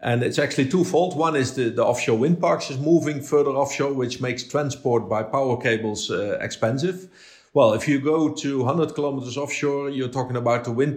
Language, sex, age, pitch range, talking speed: English, male, 50-69, 125-160 Hz, 195 wpm